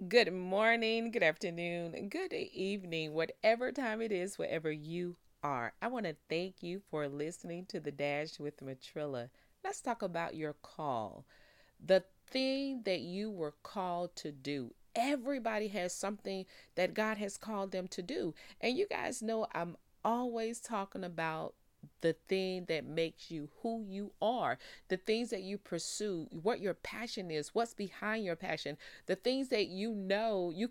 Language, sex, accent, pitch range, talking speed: English, female, American, 165-220 Hz, 160 wpm